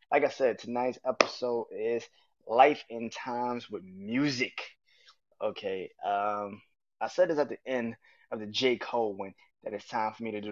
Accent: American